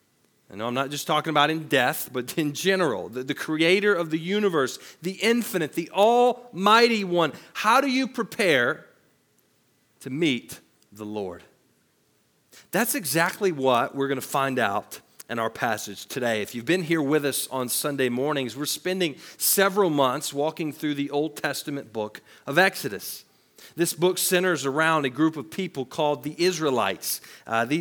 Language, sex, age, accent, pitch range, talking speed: English, male, 40-59, American, 145-190 Hz, 160 wpm